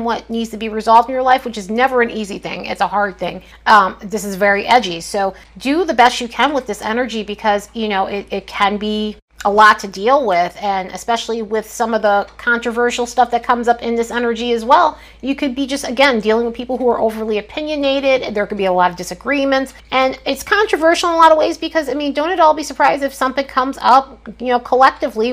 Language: English